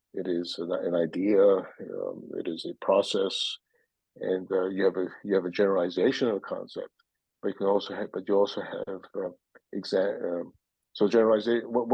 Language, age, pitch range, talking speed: English, 50-69, 95-135 Hz, 175 wpm